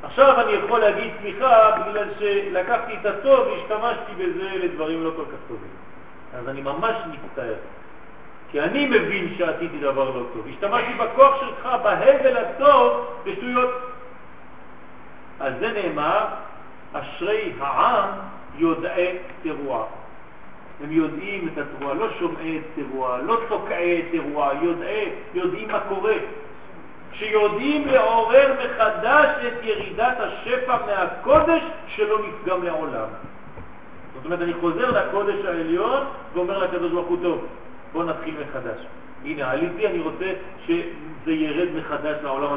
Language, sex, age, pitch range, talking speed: French, male, 50-69, 165-275 Hz, 95 wpm